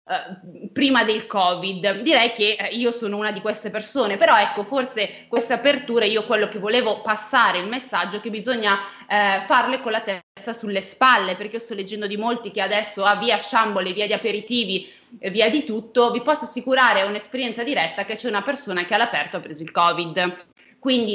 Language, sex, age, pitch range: Italian, female, 20-39, 200-245 Hz